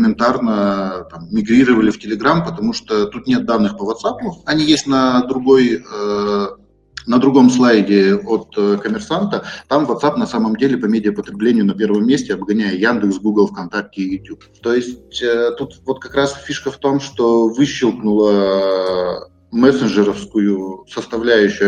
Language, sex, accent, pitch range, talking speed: Russian, male, native, 100-135 Hz, 145 wpm